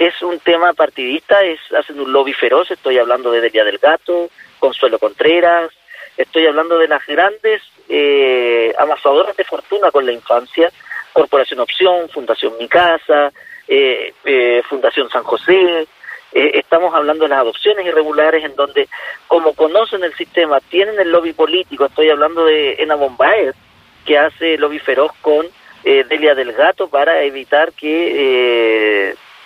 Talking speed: 150 wpm